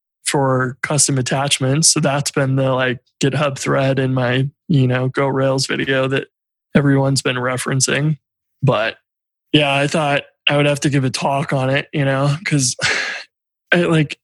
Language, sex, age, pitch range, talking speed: English, male, 20-39, 135-155 Hz, 160 wpm